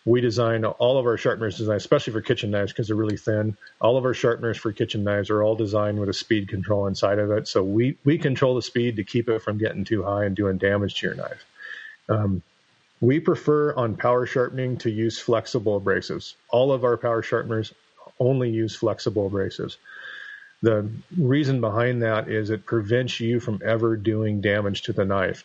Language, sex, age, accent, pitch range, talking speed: English, male, 40-59, American, 105-120 Hz, 200 wpm